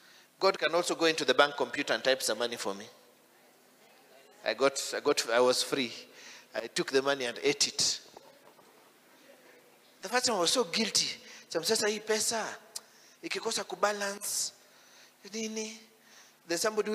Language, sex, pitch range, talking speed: English, male, 135-215 Hz, 135 wpm